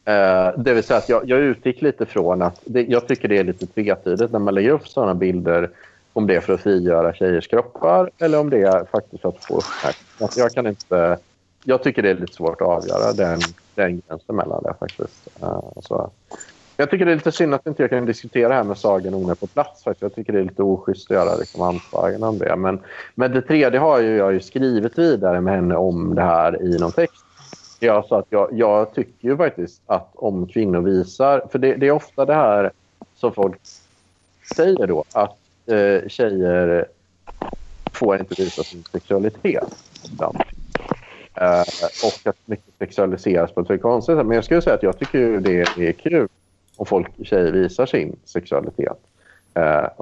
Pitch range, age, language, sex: 90-130 Hz, 30-49, Swedish, male